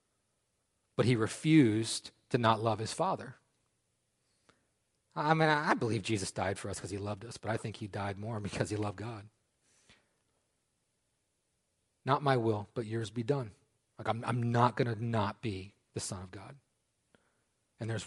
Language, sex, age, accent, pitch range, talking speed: English, male, 40-59, American, 115-180 Hz, 170 wpm